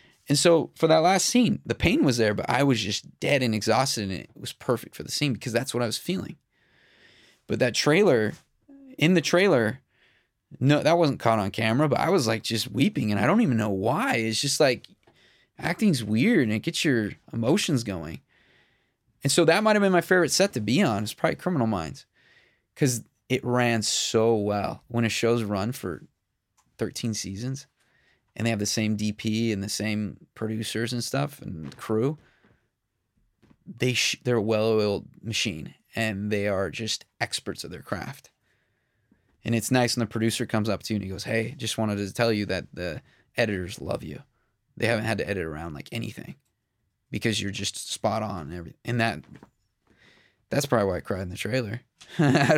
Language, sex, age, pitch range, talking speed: English, male, 20-39, 110-140 Hz, 195 wpm